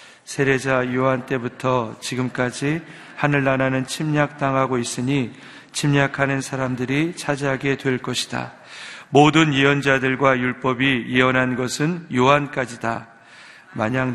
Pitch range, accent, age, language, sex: 125-140 Hz, native, 40-59, Korean, male